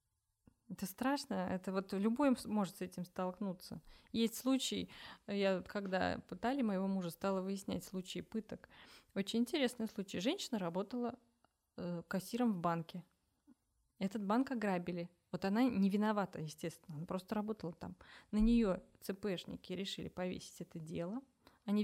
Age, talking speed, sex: 20-39, 135 wpm, female